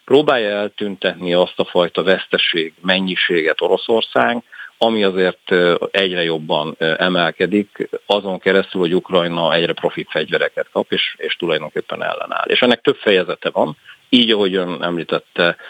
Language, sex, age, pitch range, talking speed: Hungarian, male, 50-69, 90-115 Hz, 130 wpm